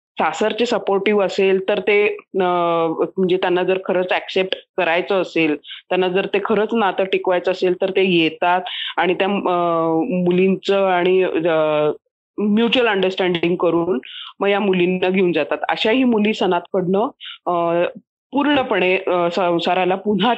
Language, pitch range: Marathi, 180-230 Hz